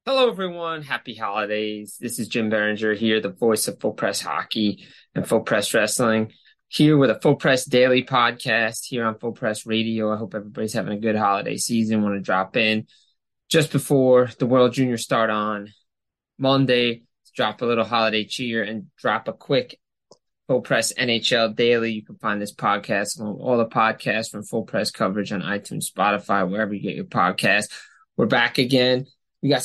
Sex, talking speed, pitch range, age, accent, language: male, 180 wpm, 110-125 Hz, 20-39, American, English